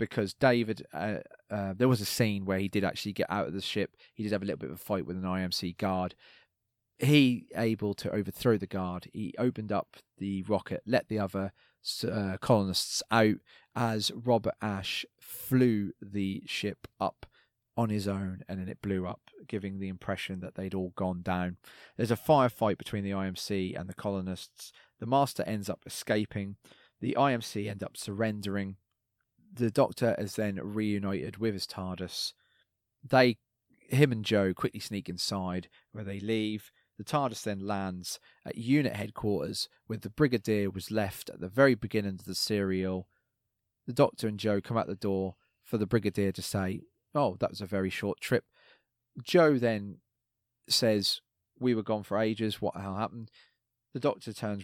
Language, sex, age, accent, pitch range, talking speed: English, male, 30-49, British, 95-115 Hz, 175 wpm